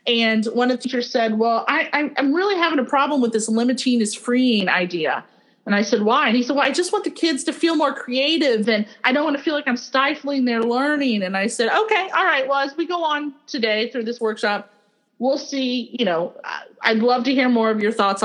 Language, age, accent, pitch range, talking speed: English, 30-49, American, 220-275 Hz, 240 wpm